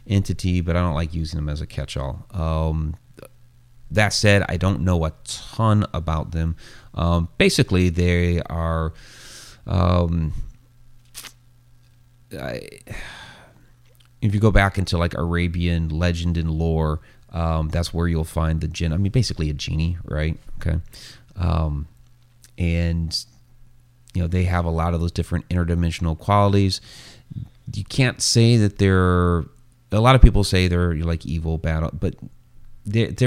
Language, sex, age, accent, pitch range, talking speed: English, male, 30-49, American, 85-115 Hz, 145 wpm